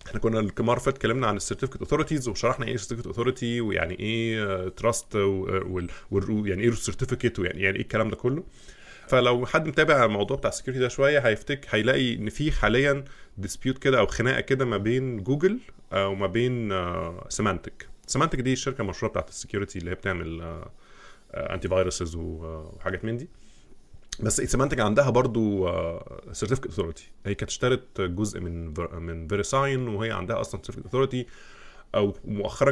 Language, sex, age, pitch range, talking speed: Arabic, male, 20-39, 100-130 Hz, 160 wpm